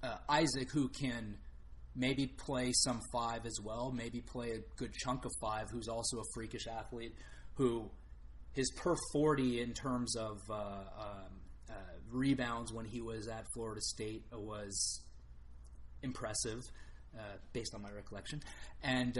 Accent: American